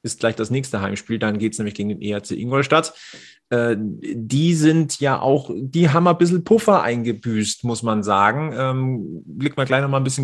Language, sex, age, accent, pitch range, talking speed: German, male, 30-49, German, 115-140 Hz, 200 wpm